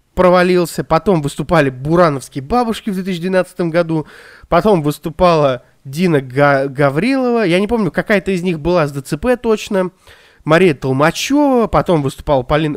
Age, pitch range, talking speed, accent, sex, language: 20-39, 145-200 Hz, 130 wpm, native, male, Russian